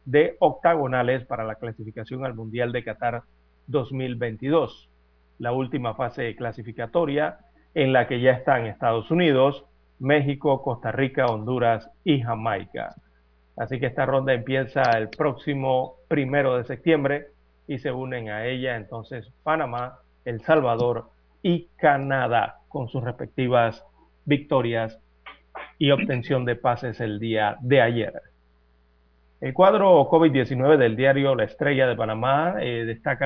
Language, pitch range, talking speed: Spanish, 115-135 Hz, 130 wpm